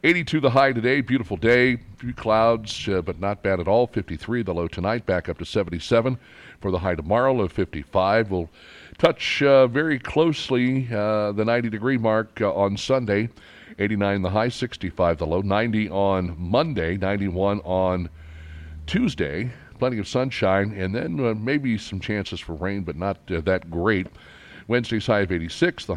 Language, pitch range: English, 90-120 Hz